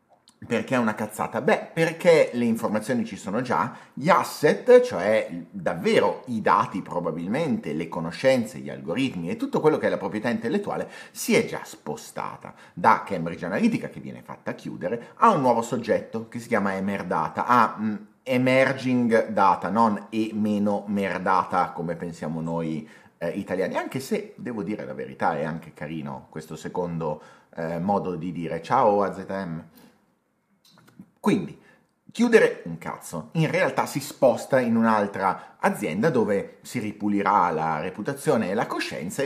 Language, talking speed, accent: Italian, 150 wpm, native